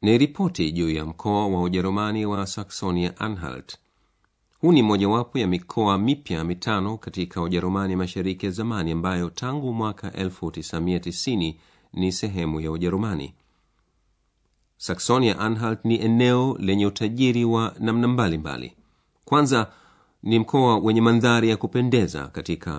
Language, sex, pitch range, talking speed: Swahili, male, 85-110 Hz, 115 wpm